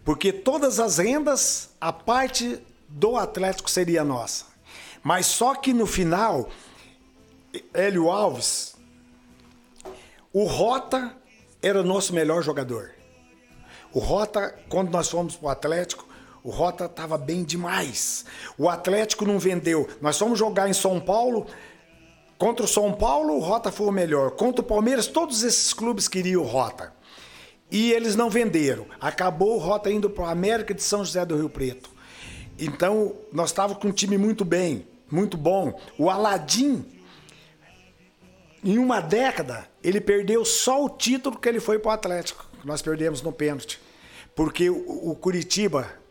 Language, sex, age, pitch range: Portuguese, male, 50-69, 160-220 Hz